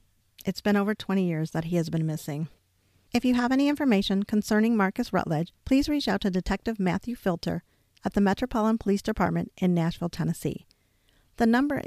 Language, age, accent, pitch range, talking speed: English, 50-69, American, 170-215 Hz, 175 wpm